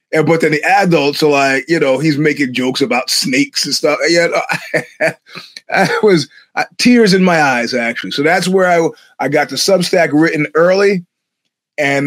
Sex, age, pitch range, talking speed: male, 30-49, 135-175 Hz, 185 wpm